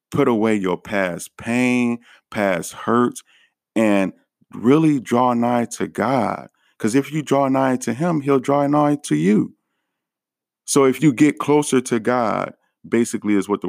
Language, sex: English, male